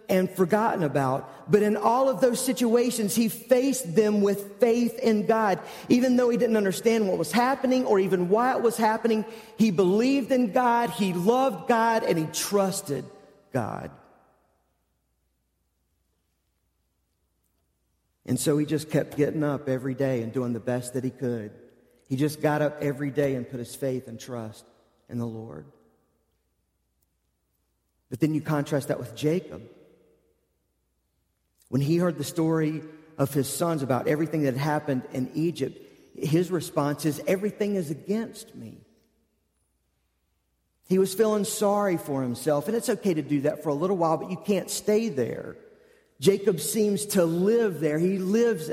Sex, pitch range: male, 130-220 Hz